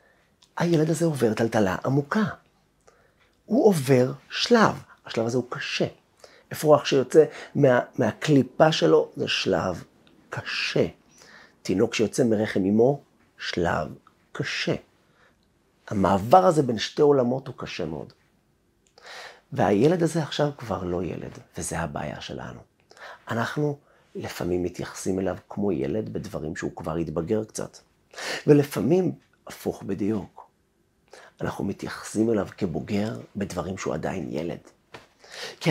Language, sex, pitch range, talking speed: Hebrew, male, 100-155 Hz, 110 wpm